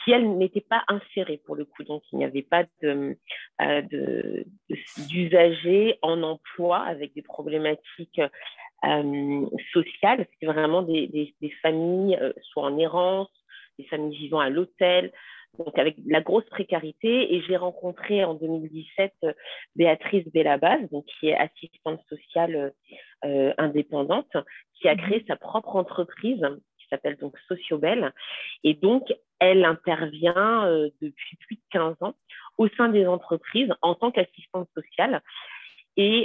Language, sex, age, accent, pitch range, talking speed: French, female, 40-59, French, 155-195 Hz, 140 wpm